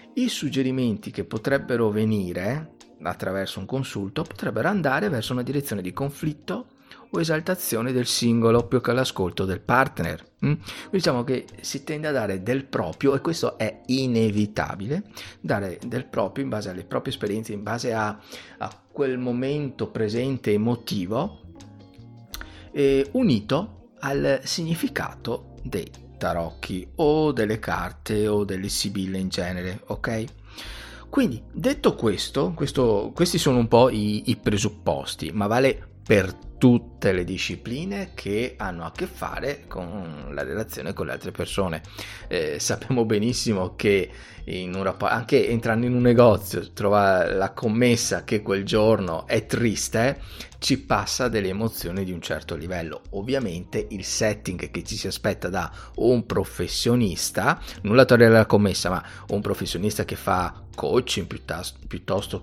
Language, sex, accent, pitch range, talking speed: Italian, male, native, 95-125 Hz, 140 wpm